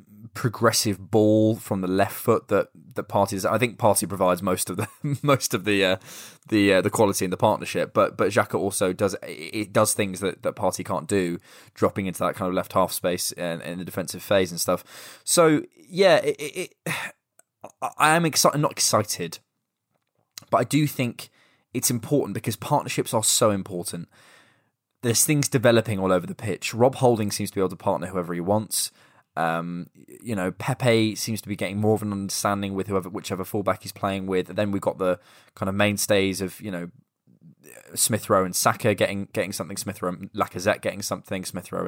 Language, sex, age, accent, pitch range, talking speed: English, male, 20-39, British, 95-115 Hz, 200 wpm